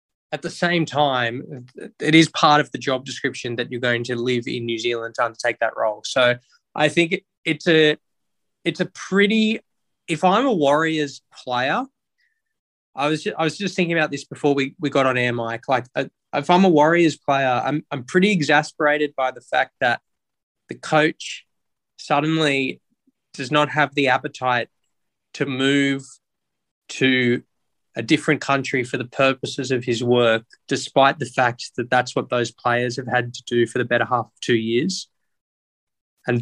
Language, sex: English, male